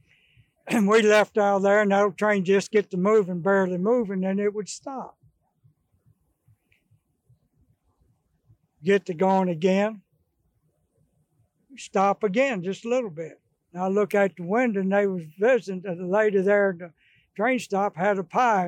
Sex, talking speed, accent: male, 160 wpm, American